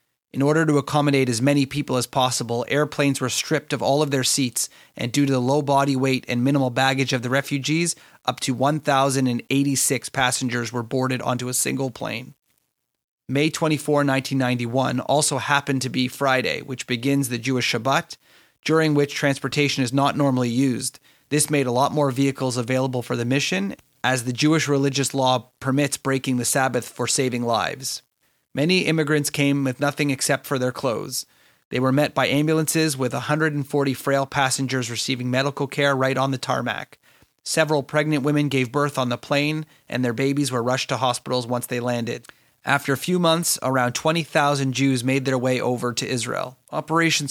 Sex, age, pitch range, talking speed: male, 30-49, 125-145 Hz, 175 wpm